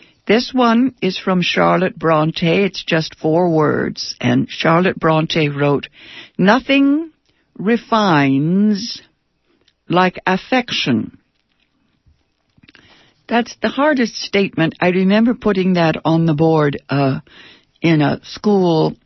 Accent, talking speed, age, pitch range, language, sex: American, 105 wpm, 60-79, 135-185 Hz, English, female